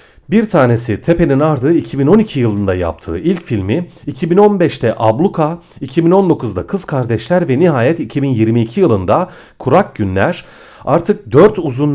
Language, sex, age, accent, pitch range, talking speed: Turkish, male, 40-59, native, 110-165 Hz, 115 wpm